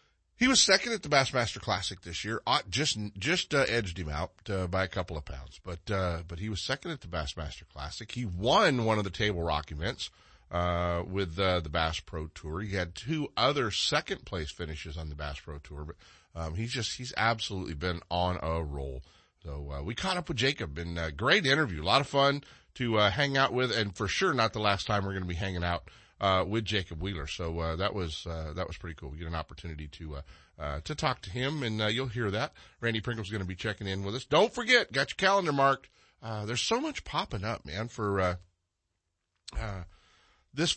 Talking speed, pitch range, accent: 230 wpm, 85-125 Hz, American